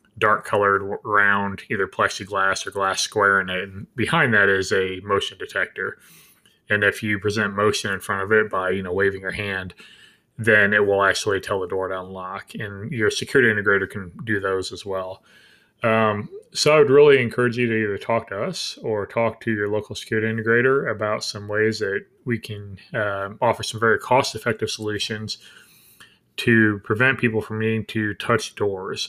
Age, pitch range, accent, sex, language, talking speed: 20-39, 100-115 Hz, American, male, English, 185 wpm